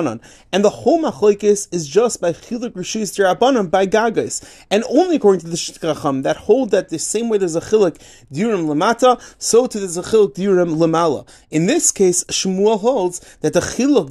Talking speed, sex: 180 wpm, male